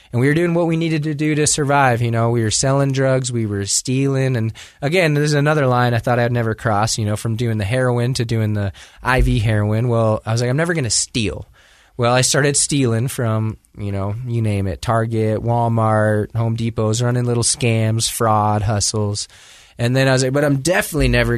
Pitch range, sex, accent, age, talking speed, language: 110-130 Hz, male, American, 20-39, 220 wpm, English